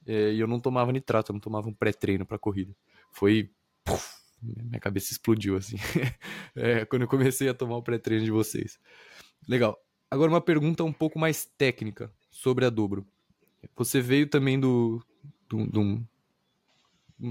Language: Portuguese